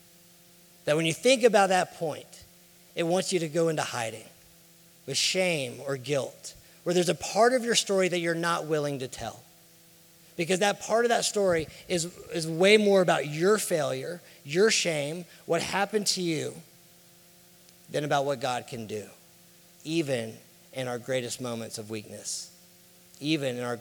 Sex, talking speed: male, 165 wpm